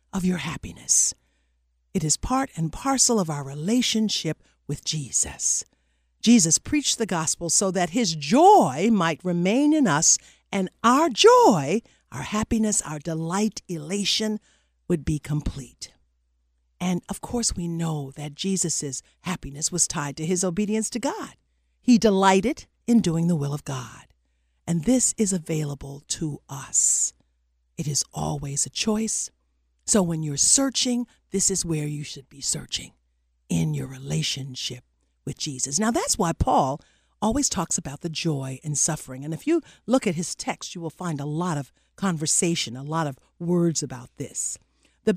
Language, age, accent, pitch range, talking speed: English, 50-69, American, 140-215 Hz, 155 wpm